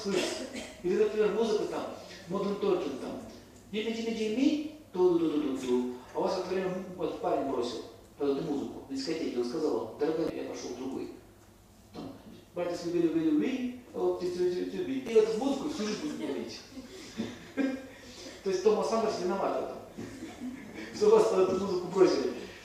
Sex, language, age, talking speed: male, Russian, 40-59, 155 wpm